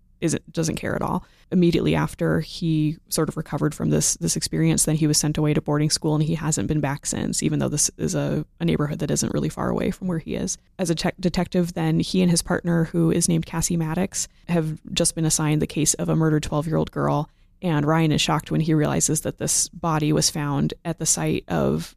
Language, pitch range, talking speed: English, 150-170 Hz, 235 wpm